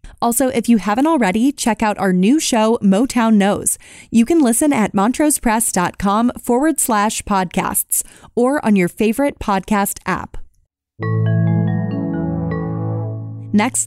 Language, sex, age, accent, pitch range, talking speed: English, female, 20-39, American, 195-255 Hz, 115 wpm